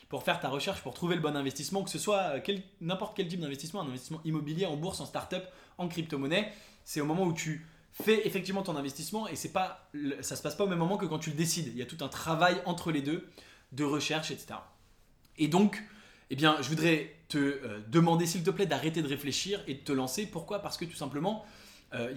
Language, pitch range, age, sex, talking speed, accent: English, 140-185 Hz, 20-39, male, 235 wpm, French